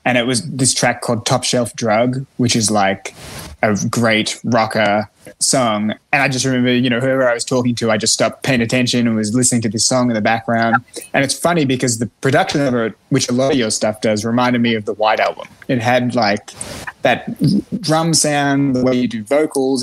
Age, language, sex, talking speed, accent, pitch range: 20-39, English, male, 220 wpm, Australian, 115-130 Hz